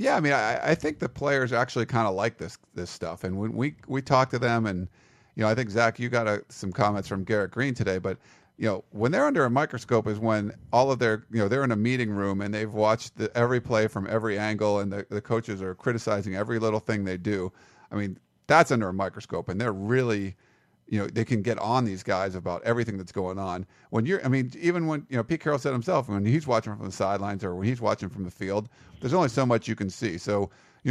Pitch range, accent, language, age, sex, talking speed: 100-125 Hz, American, English, 50-69, male, 260 wpm